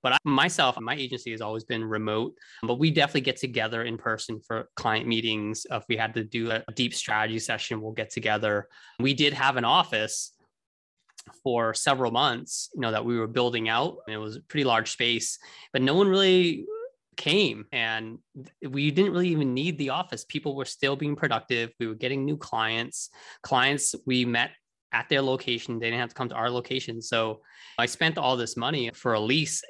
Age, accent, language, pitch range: 20-39, American, English, 110-135 Hz